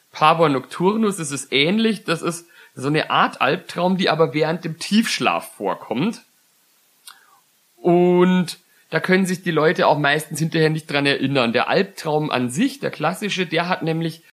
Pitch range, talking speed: 135-185 Hz, 165 wpm